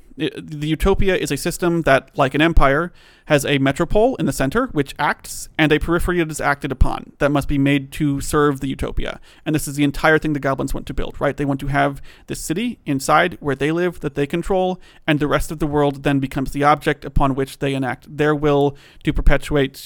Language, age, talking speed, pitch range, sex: English, 30-49, 225 wpm, 140-170 Hz, male